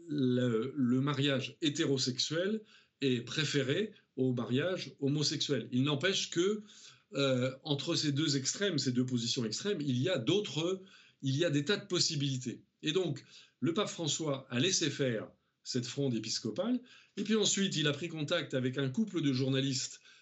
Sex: male